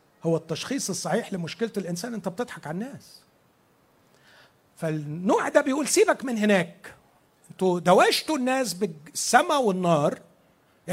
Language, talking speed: Arabic, 115 wpm